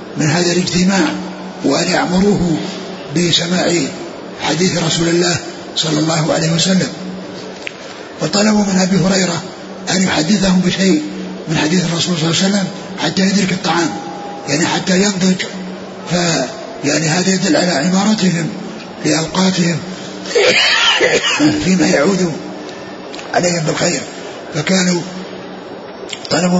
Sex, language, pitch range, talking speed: male, Arabic, 165-190 Hz, 105 wpm